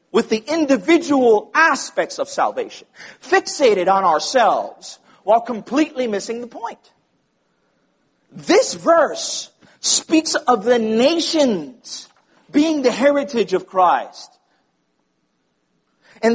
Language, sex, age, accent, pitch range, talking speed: English, male, 40-59, American, 195-305 Hz, 95 wpm